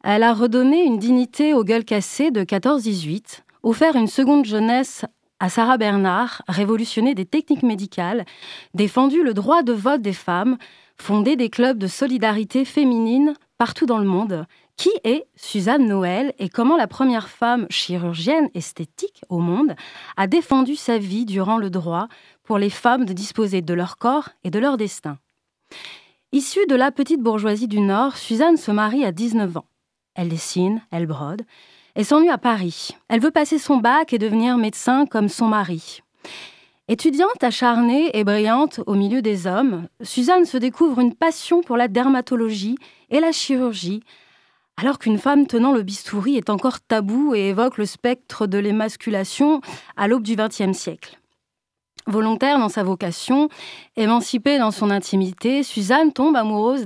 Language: French